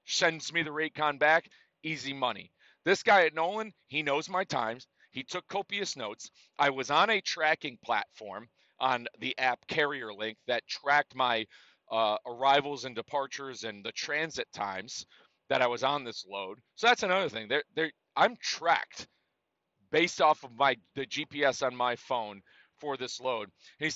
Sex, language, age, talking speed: male, English, 40-59, 170 wpm